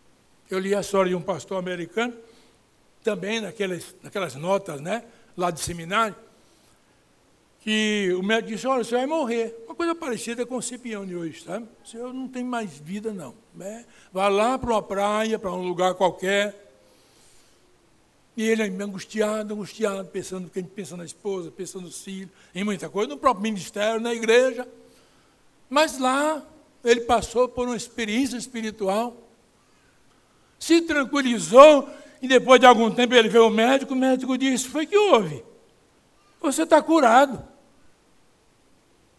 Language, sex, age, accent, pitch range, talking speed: Portuguese, male, 60-79, Brazilian, 185-245 Hz, 155 wpm